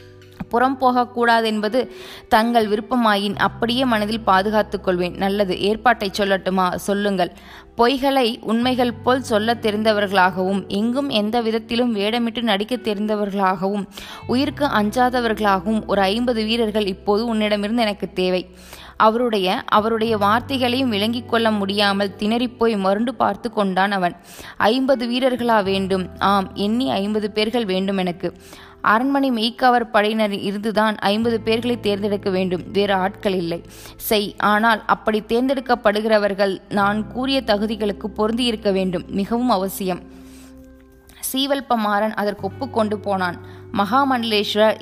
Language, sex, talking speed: Tamil, female, 110 wpm